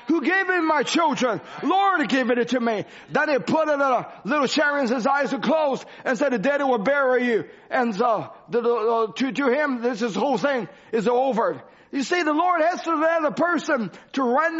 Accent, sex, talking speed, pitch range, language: American, male, 210 wpm, 255-315 Hz, English